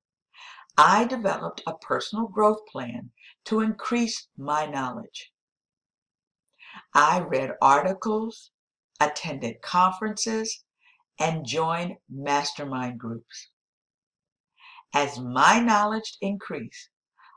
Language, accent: English, American